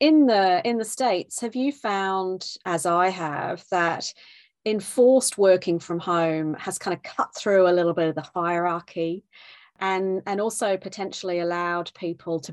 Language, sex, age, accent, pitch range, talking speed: English, female, 30-49, British, 160-190 Hz, 165 wpm